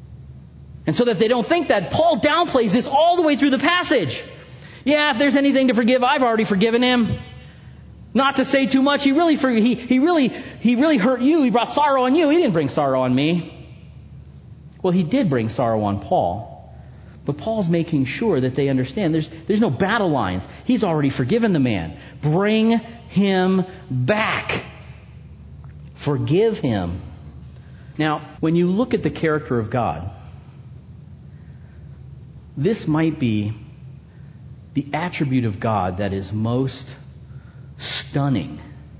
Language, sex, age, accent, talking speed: English, male, 40-59, American, 155 wpm